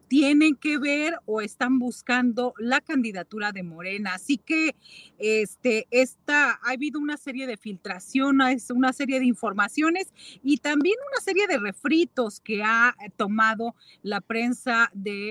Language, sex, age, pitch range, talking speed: Spanish, female, 40-59, 220-295 Hz, 135 wpm